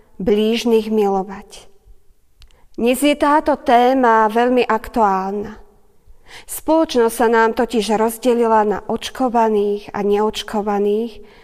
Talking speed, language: 90 wpm, Slovak